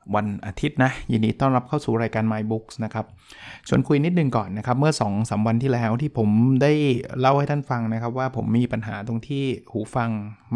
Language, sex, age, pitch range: Thai, male, 20-39, 110-130 Hz